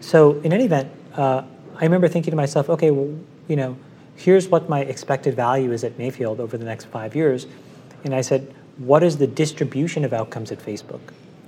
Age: 30-49